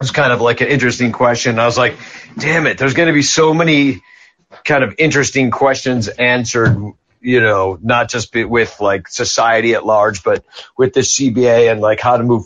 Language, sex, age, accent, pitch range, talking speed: English, male, 50-69, American, 115-135 Hz, 200 wpm